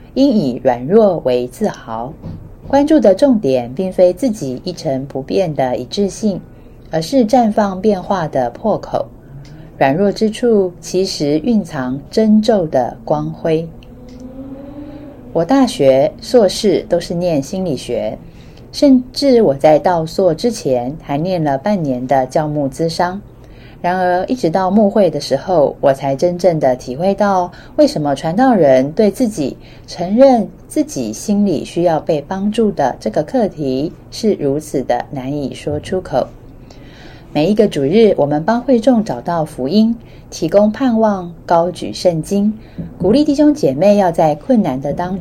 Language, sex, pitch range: Chinese, female, 140-215 Hz